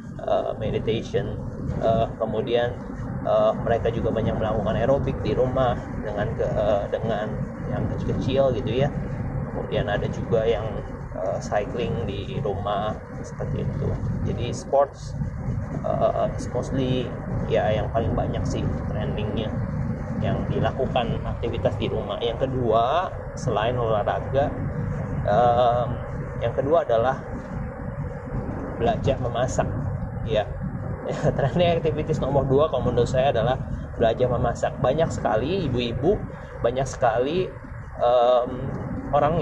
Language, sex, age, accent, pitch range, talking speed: Indonesian, male, 30-49, native, 115-135 Hz, 110 wpm